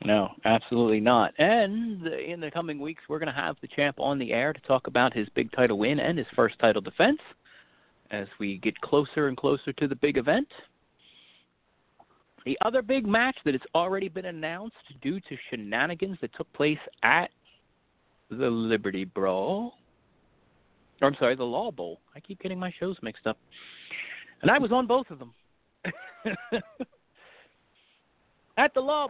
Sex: male